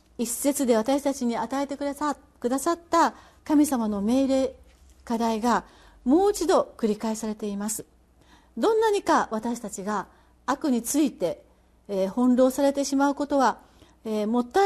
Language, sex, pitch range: Japanese, female, 195-280 Hz